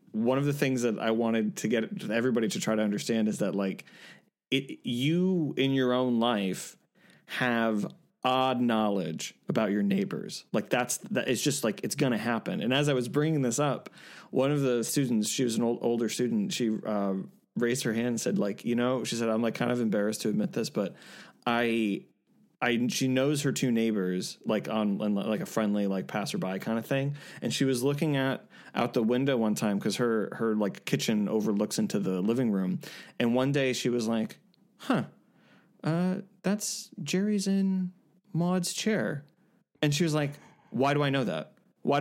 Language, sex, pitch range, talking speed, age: English, male, 115-150 Hz, 195 wpm, 20-39